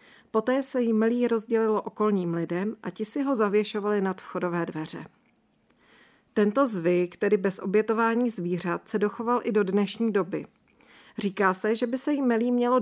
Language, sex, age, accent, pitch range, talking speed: Czech, female, 40-59, native, 185-235 Hz, 165 wpm